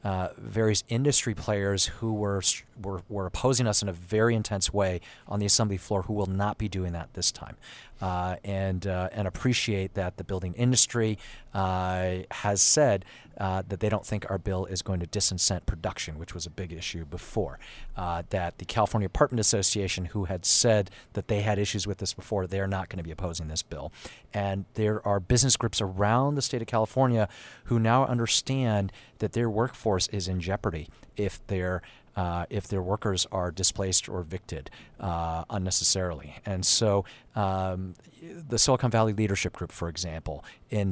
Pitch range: 90-110 Hz